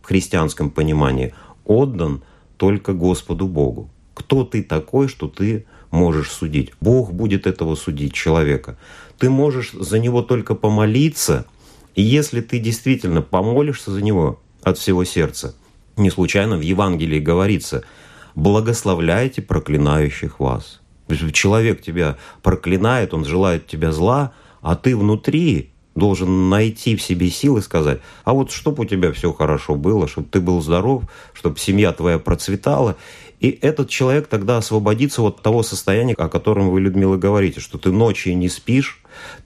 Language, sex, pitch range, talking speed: Russian, male, 85-115 Hz, 140 wpm